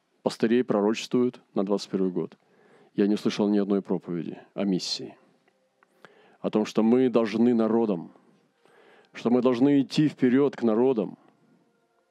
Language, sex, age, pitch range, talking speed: Russian, male, 40-59, 105-125 Hz, 130 wpm